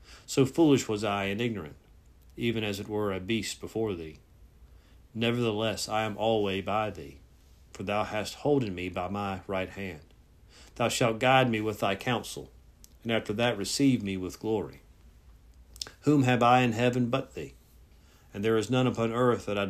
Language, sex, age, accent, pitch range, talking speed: English, male, 50-69, American, 85-115 Hz, 175 wpm